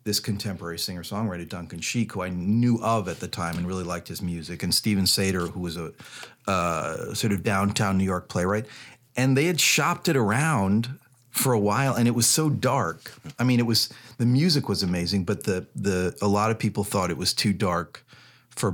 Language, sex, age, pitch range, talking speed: English, male, 40-59, 95-120 Hz, 210 wpm